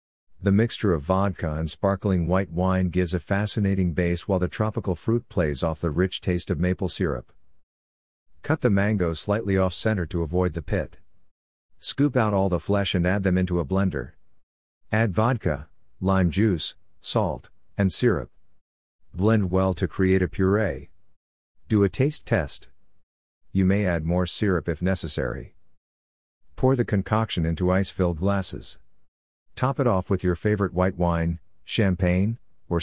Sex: male